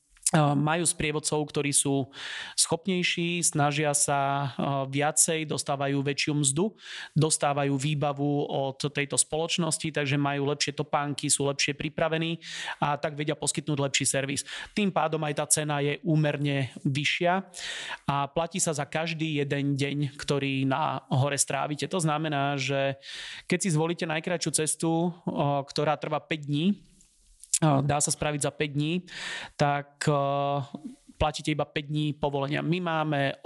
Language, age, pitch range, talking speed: Slovak, 30-49, 145-160 Hz, 135 wpm